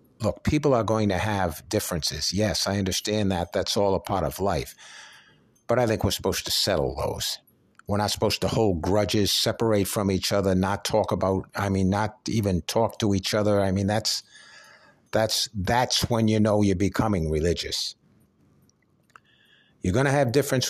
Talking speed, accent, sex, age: 180 wpm, American, male, 60-79